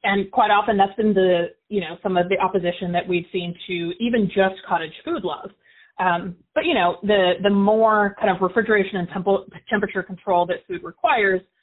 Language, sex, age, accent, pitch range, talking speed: English, female, 30-49, American, 175-205 Hz, 195 wpm